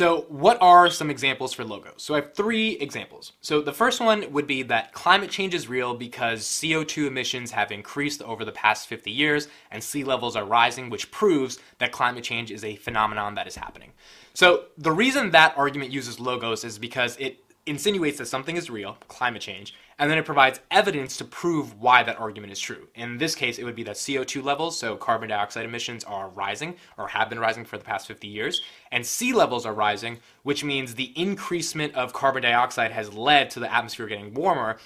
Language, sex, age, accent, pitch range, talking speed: English, male, 20-39, American, 115-145 Hz, 210 wpm